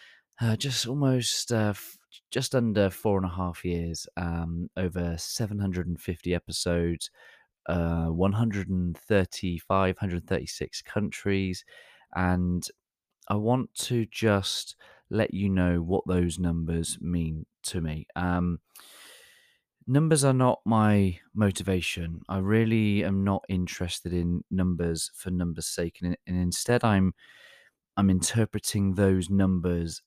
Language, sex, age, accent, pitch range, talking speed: English, male, 20-39, British, 85-100 Hz, 115 wpm